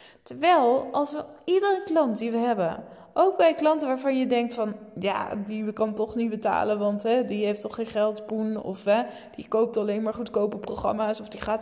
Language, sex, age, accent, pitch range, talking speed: Dutch, female, 20-39, Dutch, 210-295 Hz, 205 wpm